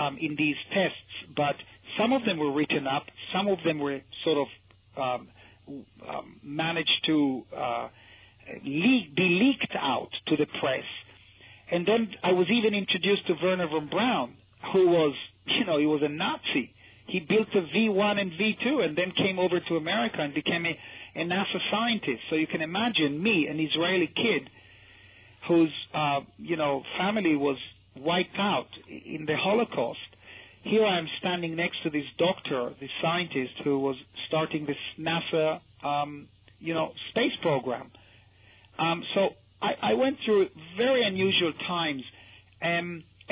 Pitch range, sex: 140-195 Hz, male